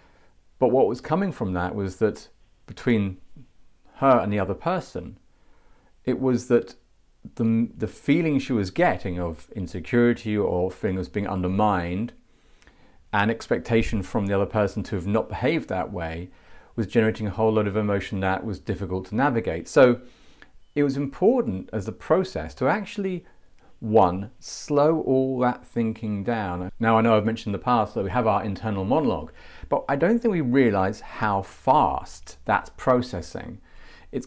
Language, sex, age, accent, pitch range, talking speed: English, male, 40-59, British, 95-125 Hz, 165 wpm